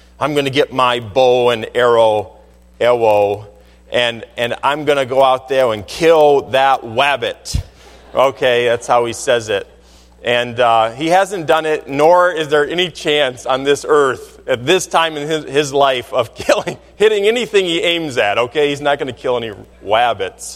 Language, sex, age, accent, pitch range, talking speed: English, male, 40-59, American, 115-185 Hz, 185 wpm